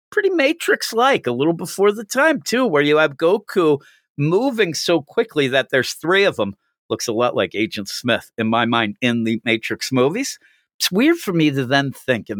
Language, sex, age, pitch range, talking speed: English, male, 50-69, 110-155 Hz, 200 wpm